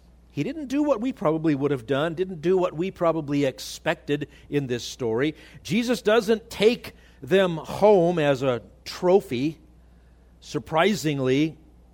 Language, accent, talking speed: English, American, 135 wpm